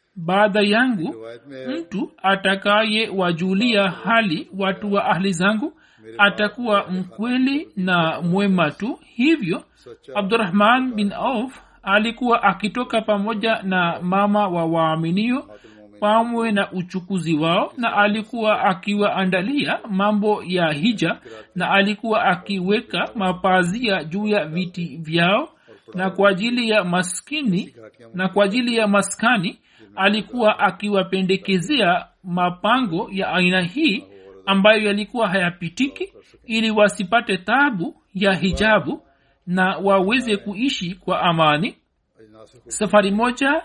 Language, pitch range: Swahili, 185-225 Hz